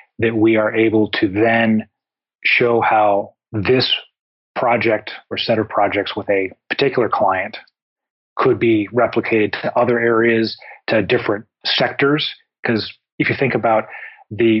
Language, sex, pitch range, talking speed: English, male, 110-125 Hz, 135 wpm